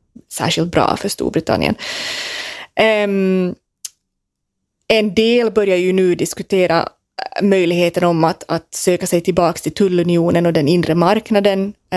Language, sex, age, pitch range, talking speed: Swedish, female, 20-39, 165-190 Hz, 115 wpm